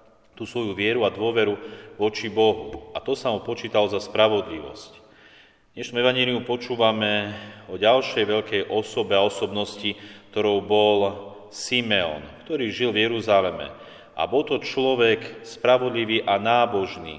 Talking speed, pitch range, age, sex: 130 wpm, 100-110 Hz, 40-59, male